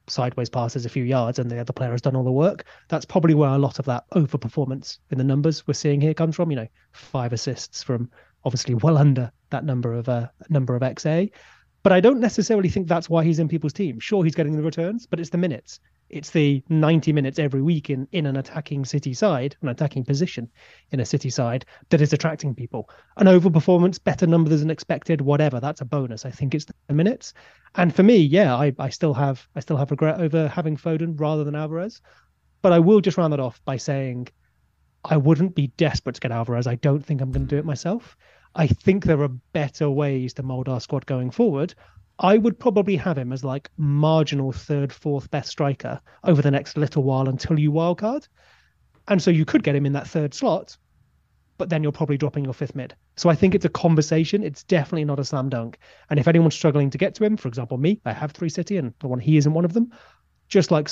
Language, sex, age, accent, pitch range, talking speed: English, male, 30-49, British, 130-165 Hz, 230 wpm